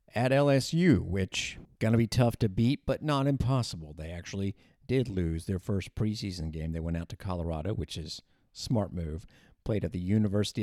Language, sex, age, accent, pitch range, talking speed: English, male, 50-69, American, 90-115 Hz, 185 wpm